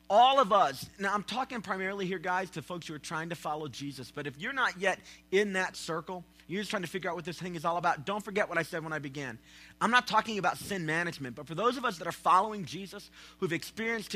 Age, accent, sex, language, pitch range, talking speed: 40-59, American, male, English, 160-235 Hz, 265 wpm